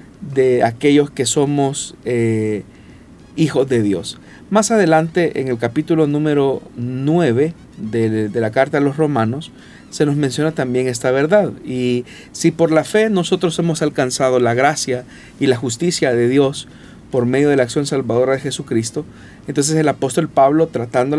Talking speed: 160 wpm